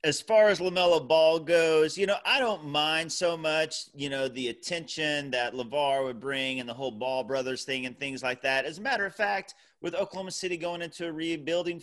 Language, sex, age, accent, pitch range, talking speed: English, male, 30-49, American, 125-160 Hz, 220 wpm